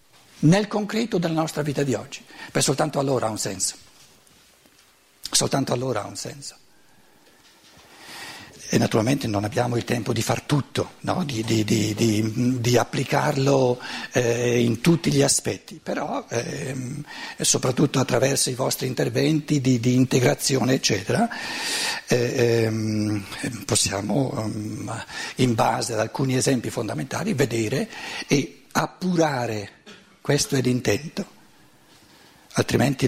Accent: native